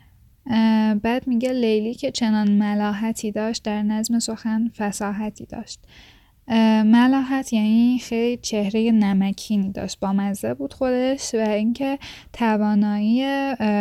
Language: Persian